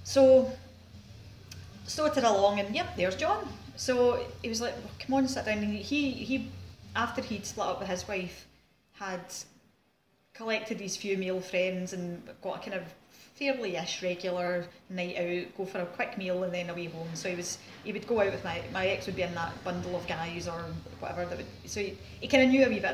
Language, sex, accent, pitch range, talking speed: English, female, British, 170-210 Hz, 215 wpm